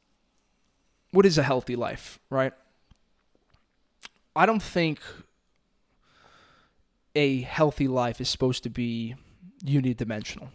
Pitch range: 120-145 Hz